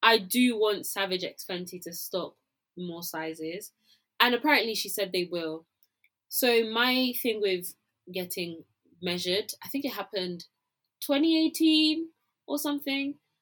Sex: female